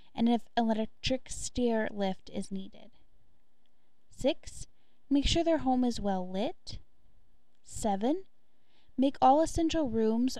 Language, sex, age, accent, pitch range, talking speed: English, female, 10-29, American, 210-275 Hz, 115 wpm